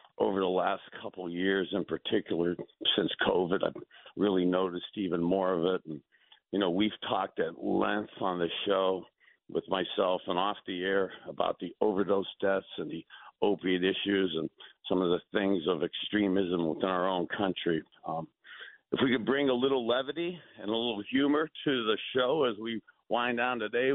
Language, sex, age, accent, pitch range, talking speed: English, male, 50-69, American, 95-120 Hz, 180 wpm